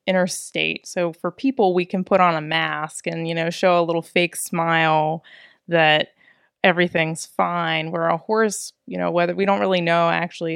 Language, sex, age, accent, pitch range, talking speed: English, female, 20-39, American, 165-185 Hz, 180 wpm